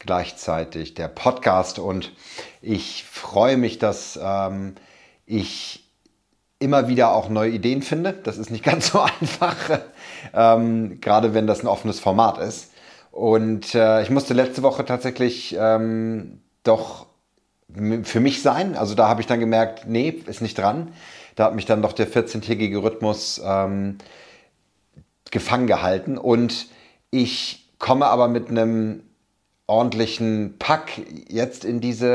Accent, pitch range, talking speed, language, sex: German, 100-120 Hz, 140 wpm, English, male